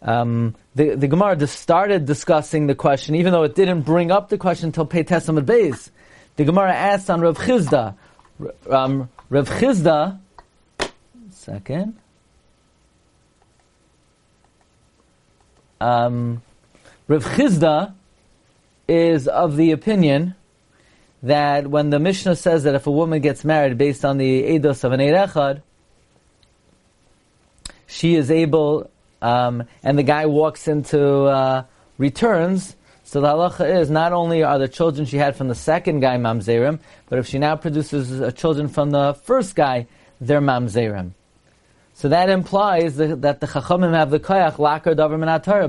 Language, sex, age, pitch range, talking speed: English, male, 40-59, 135-165 Hz, 140 wpm